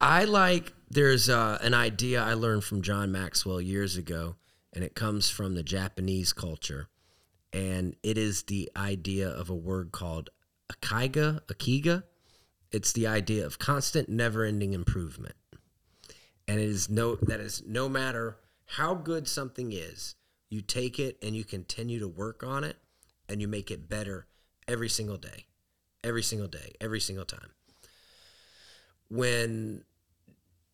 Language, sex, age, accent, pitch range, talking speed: English, male, 30-49, American, 90-115 Hz, 150 wpm